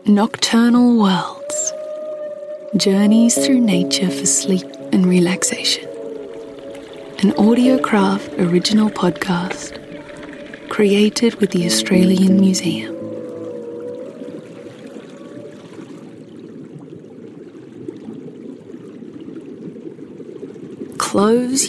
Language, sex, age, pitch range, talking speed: English, female, 30-49, 180-235 Hz, 55 wpm